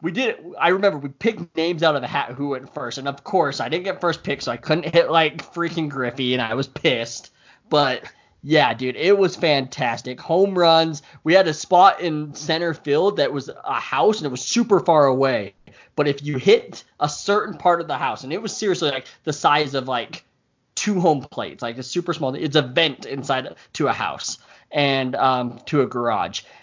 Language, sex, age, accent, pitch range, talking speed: English, male, 20-39, American, 135-170 Hz, 220 wpm